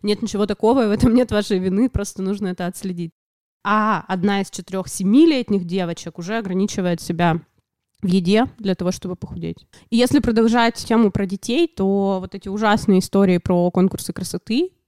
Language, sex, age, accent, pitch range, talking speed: Russian, female, 20-39, native, 185-225 Hz, 165 wpm